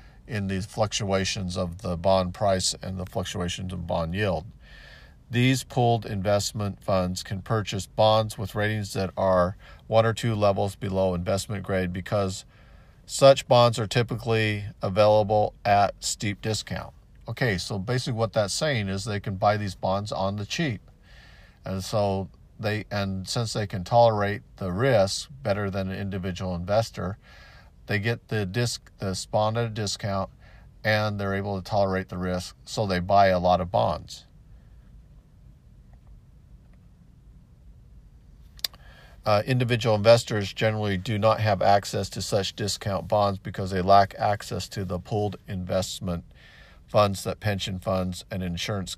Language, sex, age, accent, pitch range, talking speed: English, male, 50-69, American, 95-110 Hz, 140 wpm